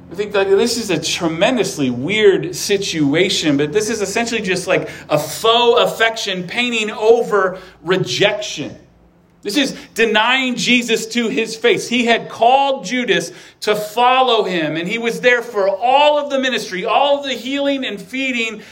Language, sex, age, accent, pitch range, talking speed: English, male, 40-59, American, 170-240 Hz, 155 wpm